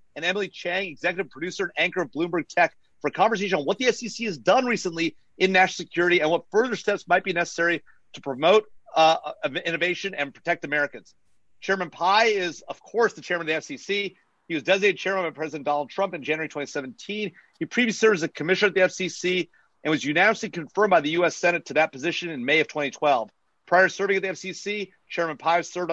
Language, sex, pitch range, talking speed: English, male, 155-190 Hz, 210 wpm